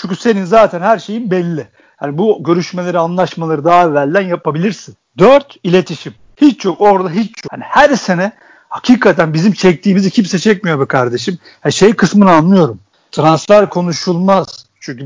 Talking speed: 145 wpm